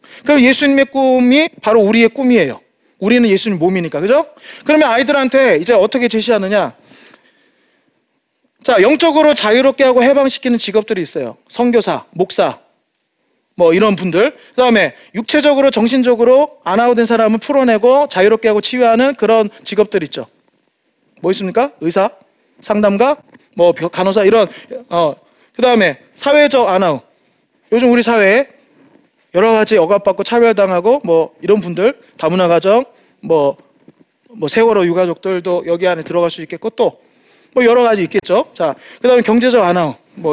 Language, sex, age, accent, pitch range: Korean, male, 30-49, native, 200-275 Hz